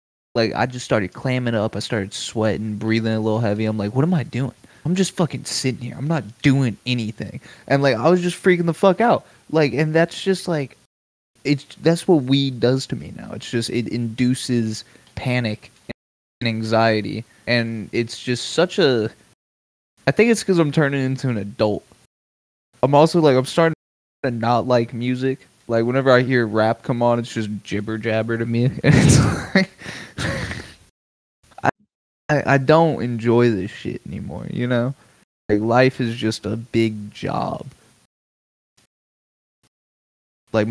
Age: 20-39